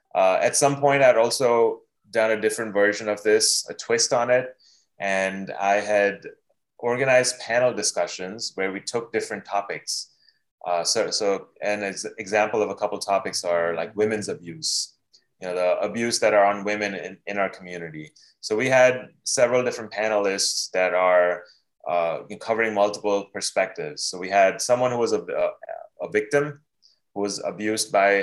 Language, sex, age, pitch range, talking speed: English, male, 20-39, 100-120 Hz, 165 wpm